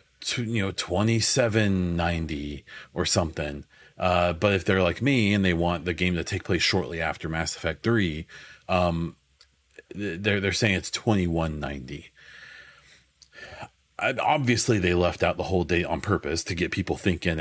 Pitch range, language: 85-100 Hz, English